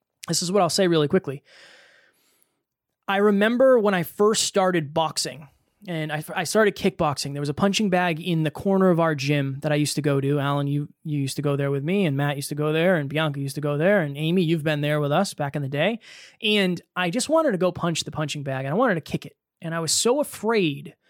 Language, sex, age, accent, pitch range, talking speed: English, male, 20-39, American, 155-205 Hz, 255 wpm